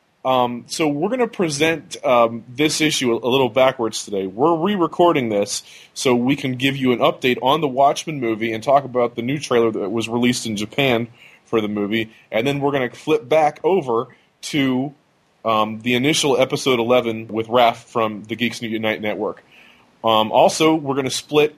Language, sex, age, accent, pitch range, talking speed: English, male, 30-49, American, 115-145 Hz, 190 wpm